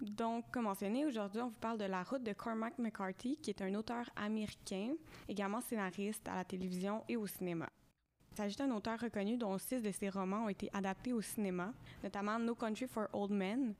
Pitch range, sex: 195-230 Hz, female